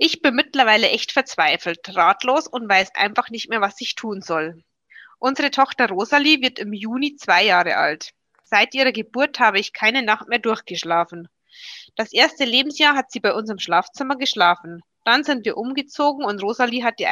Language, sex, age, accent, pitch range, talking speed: German, female, 20-39, German, 205-270 Hz, 180 wpm